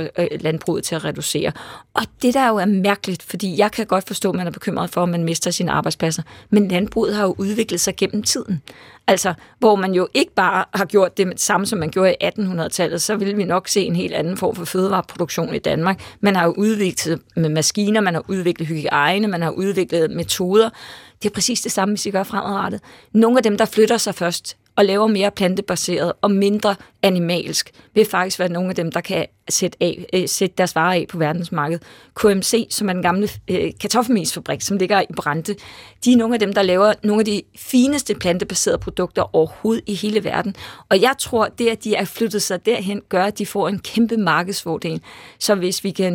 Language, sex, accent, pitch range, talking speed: Danish, female, native, 175-210 Hz, 210 wpm